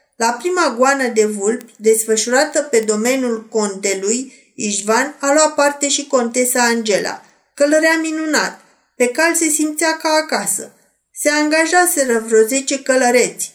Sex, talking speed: female, 130 wpm